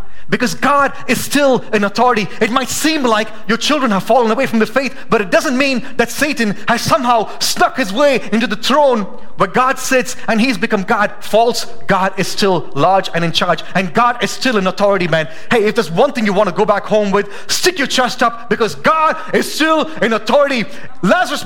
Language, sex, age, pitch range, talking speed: English, male, 30-49, 205-290 Hz, 215 wpm